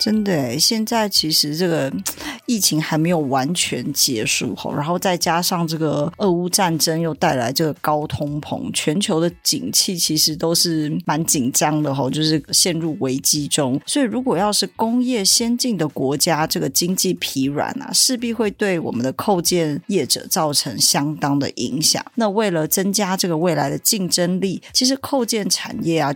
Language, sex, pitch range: Chinese, female, 155-215 Hz